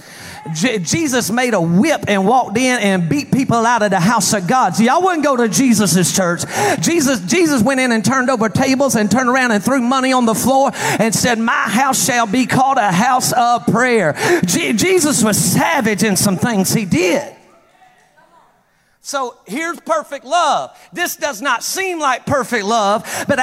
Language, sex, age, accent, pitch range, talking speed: English, male, 40-59, American, 225-275 Hz, 180 wpm